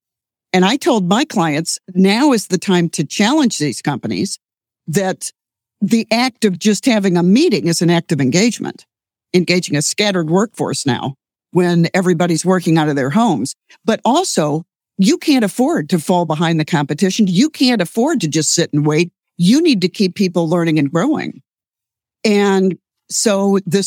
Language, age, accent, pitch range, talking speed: English, 60-79, American, 170-220 Hz, 170 wpm